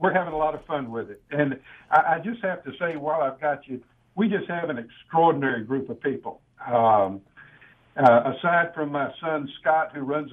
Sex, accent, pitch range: male, American, 130-160 Hz